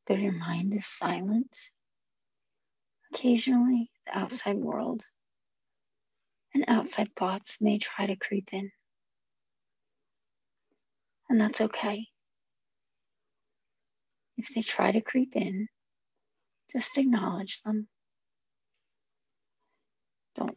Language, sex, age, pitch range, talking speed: English, female, 40-59, 200-240 Hz, 90 wpm